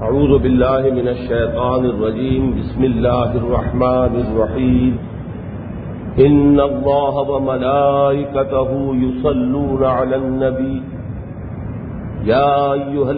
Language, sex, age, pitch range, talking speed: English, male, 50-69, 130-150 Hz, 75 wpm